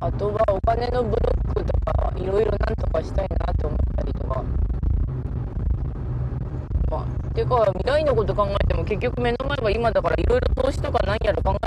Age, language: 20-39, Japanese